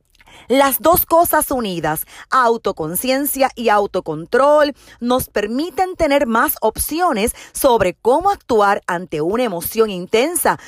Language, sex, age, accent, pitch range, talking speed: Spanish, female, 40-59, American, 210-285 Hz, 105 wpm